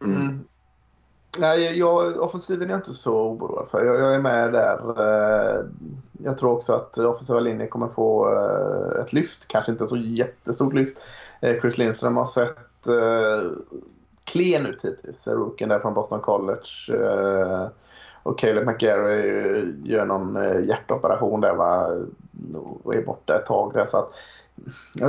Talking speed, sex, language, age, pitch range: 135 wpm, male, Swedish, 20-39, 115-140 Hz